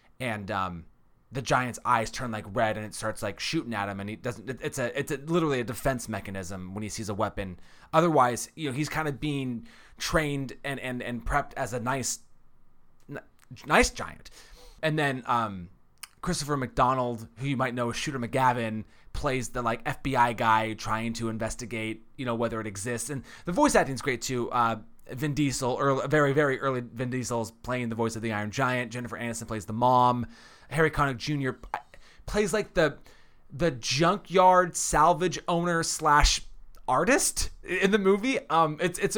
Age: 20-39